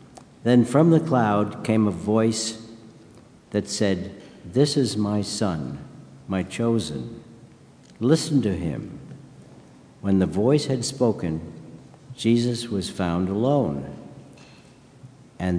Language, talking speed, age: English, 110 wpm, 60-79